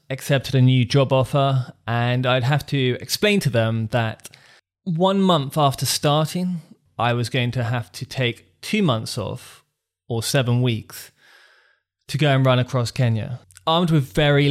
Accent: British